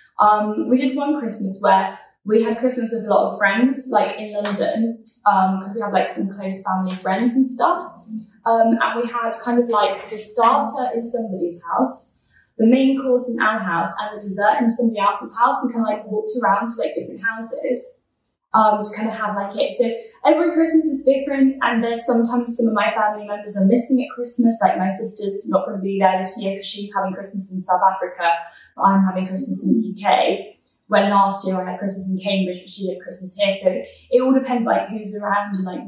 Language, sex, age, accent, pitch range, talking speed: English, female, 10-29, British, 195-245 Hz, 220 wpm